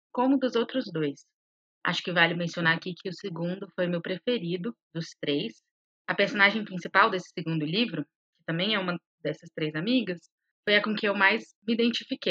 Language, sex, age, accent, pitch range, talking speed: Portuguese, female, 30-49, Brazilian, 185-260 Hz, 185 wpm